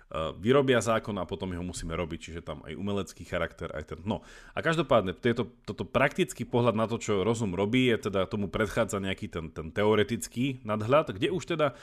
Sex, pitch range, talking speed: male, 95-125 Hz, 190 wpm